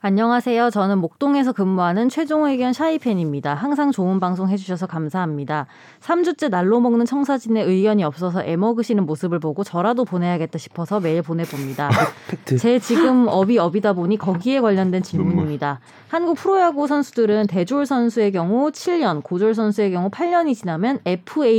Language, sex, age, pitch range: Korean, female, 20-39, 175-250 Hz